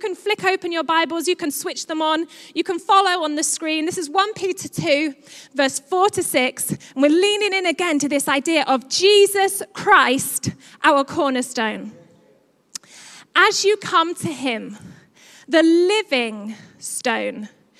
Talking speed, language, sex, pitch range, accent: 160 wpm, English, female, 260-365 Hz, British